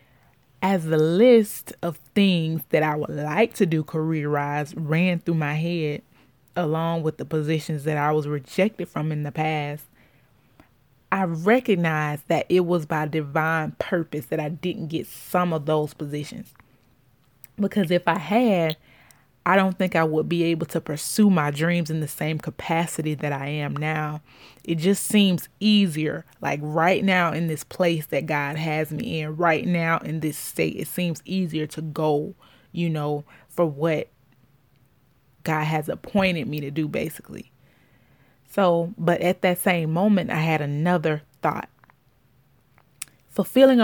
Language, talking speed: English, 155 wpm